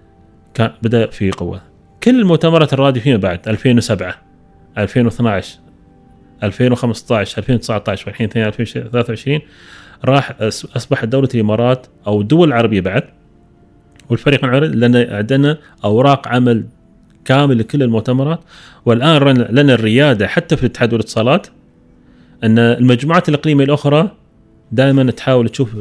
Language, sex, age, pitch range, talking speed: Arabic, male, 30-49, 100-135 Hz, 100 wpm